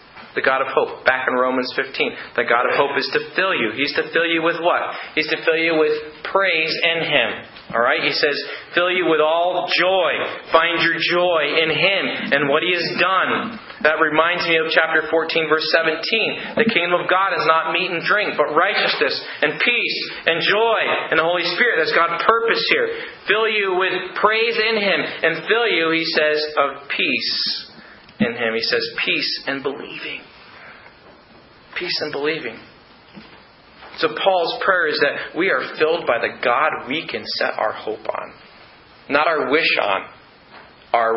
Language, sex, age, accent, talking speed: English, male, 40-59, American, 180 wpm